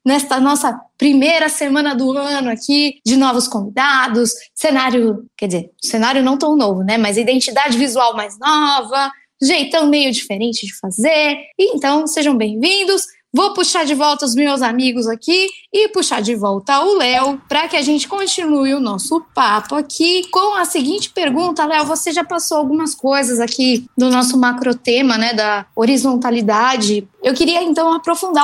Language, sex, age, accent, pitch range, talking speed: Portuguese, female, 10-29, Brazilian, 240-295 Hz, 160 wpm